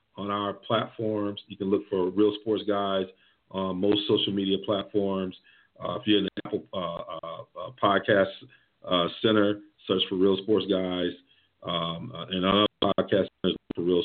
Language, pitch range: English, 90-100 Hz